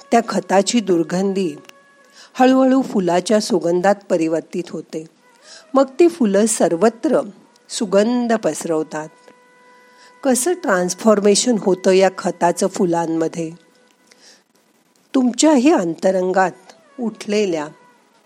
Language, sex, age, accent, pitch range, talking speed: Marathi, female, 50-69, native, 175-260 Hz, 70 wpm